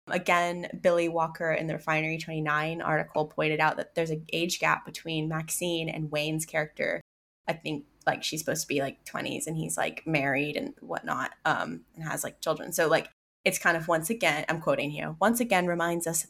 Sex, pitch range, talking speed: female, 155-175 Hz, 205 wpm